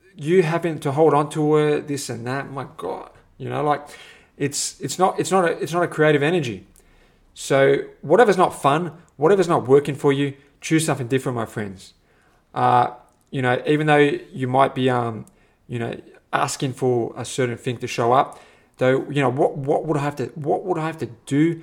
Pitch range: 120-145 Hz